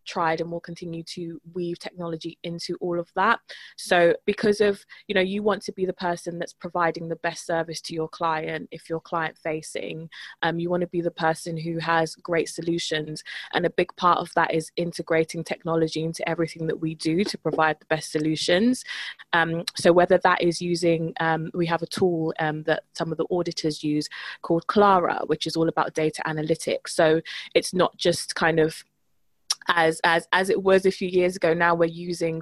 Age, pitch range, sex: 20-39, 160-180 Hz, female